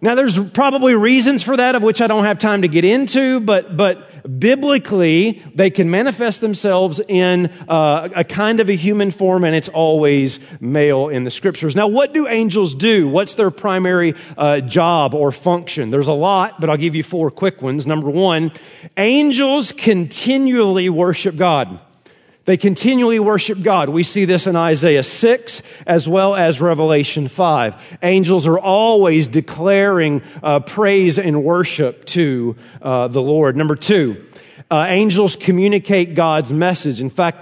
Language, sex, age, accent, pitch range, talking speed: English, male, 40-59, American, 150-200 Hz, 160 wpm